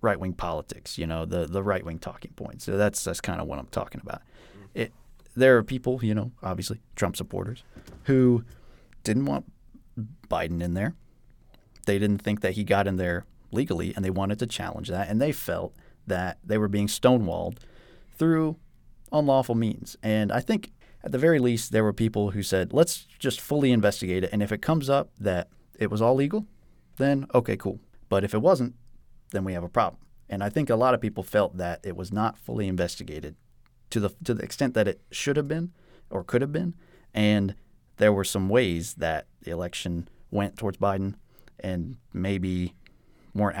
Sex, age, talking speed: male, 30-49, 195 wpm